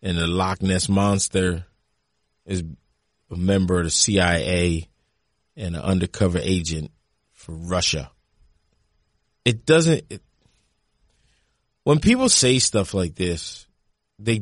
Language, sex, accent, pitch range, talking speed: English, male, American, 95-140 Hz, 110 wpm